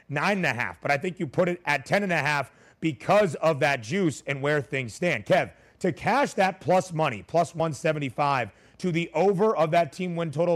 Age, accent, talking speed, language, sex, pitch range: 30-49, American, 220 wpm, English, male, 135-165 Hz